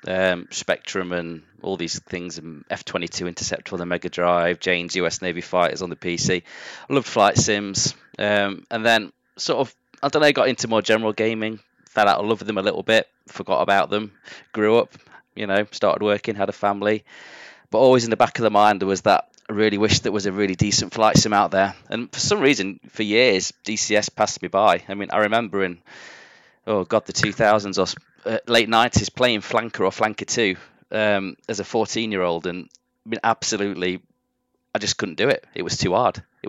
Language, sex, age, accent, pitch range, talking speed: English, male, 20-39, British, 90-110 Hz, 215 wpm